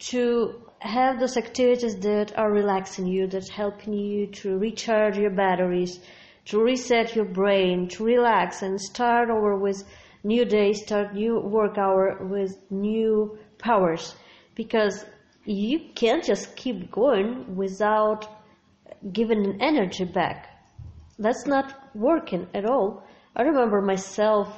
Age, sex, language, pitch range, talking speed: 20-39, female, English, 200-230 Hz, 130 wpm